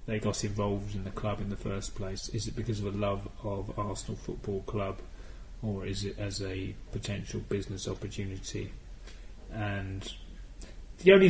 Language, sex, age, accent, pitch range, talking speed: English, male, 30-49, British, 100-110 Hz, 165 wpm